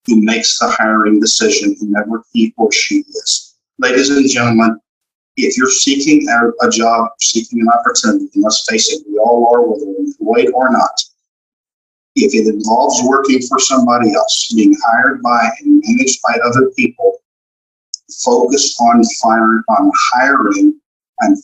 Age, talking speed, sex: 50-69, 150 wpm, male